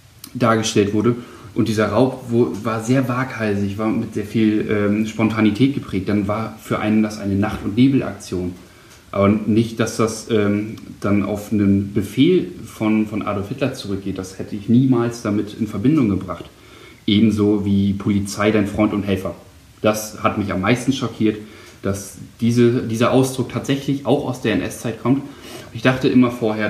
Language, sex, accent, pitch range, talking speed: German, male, German, 100-115 Hz, 165 wpm